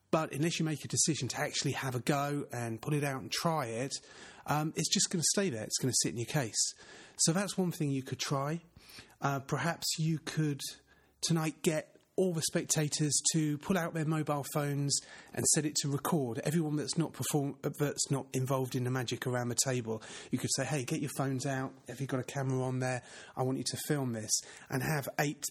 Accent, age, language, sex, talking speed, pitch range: British, 30-49, English, male, 230 wpm, 120-155 Hz